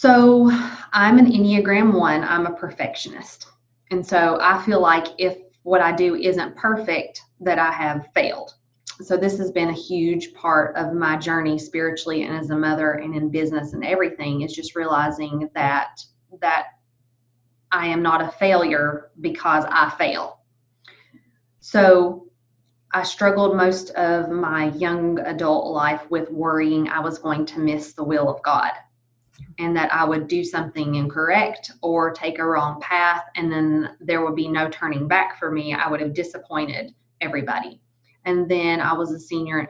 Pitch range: 150-175 Hz